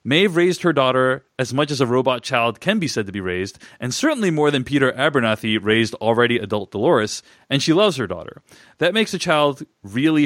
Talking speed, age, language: 210 wpm, 30-49, English